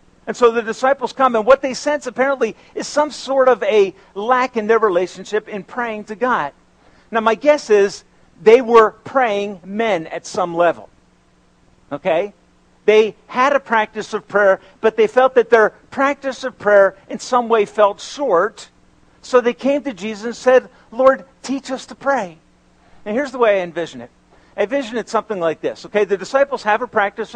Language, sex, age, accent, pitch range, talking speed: English, male, 50-69, American, 195-250 Hz, 185 wpm